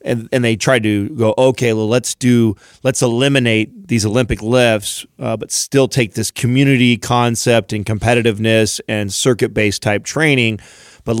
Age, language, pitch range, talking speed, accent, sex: 30-49, English, 110-125 Hz, 160 wpm, American, male